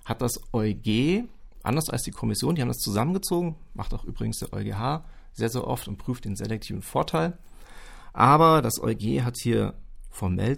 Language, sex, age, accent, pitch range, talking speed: German, male, 40-59, German, 110-155 Hz, 170 wpm